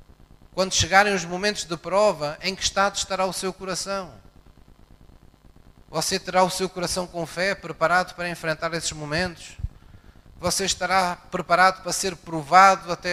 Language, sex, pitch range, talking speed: Portuguese, male, 150-180 Hz, 145 wpm